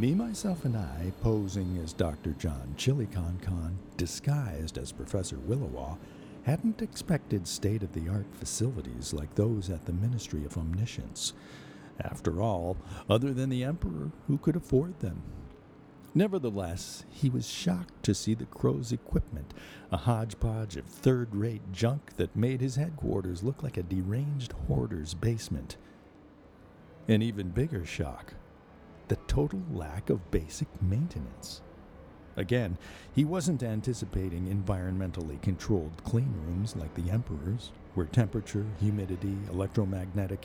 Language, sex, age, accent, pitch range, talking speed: English, male, 50-69, American, 90-115 Hz, 125 wpm